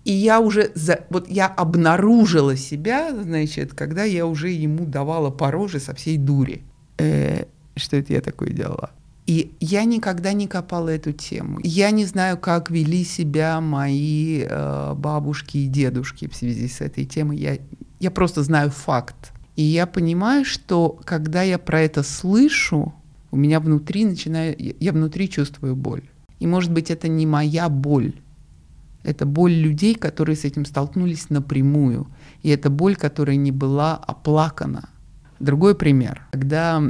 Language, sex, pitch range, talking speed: Russian, male, 140-170 Hz, 155 wpm